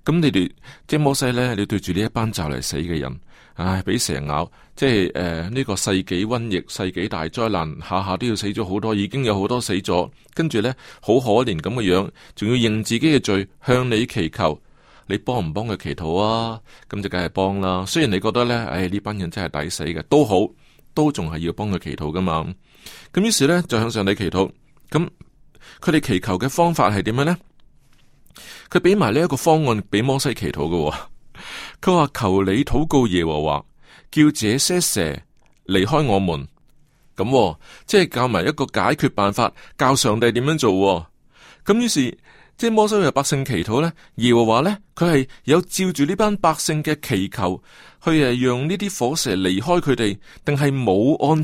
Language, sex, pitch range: Chinese, male, 95-150 Hz